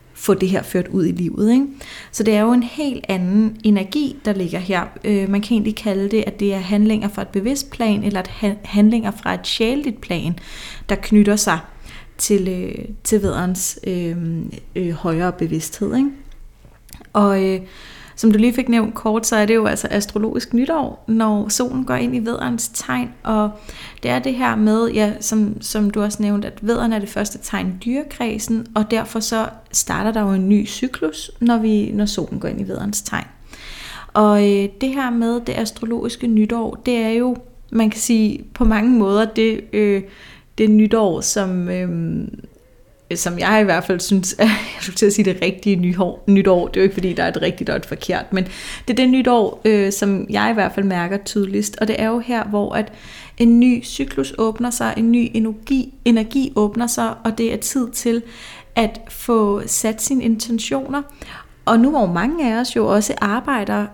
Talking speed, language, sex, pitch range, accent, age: 200 wpm, Danish, female, 200-230 Hz, native, 30-49